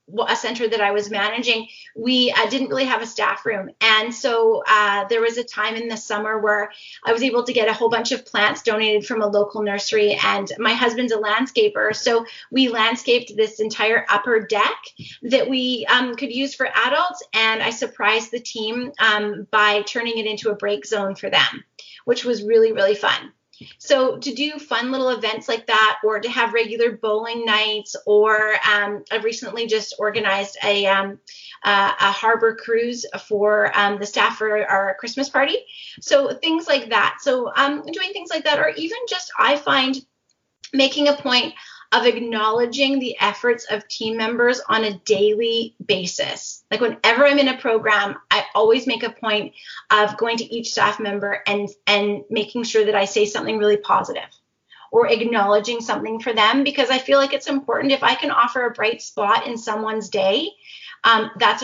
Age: 30-49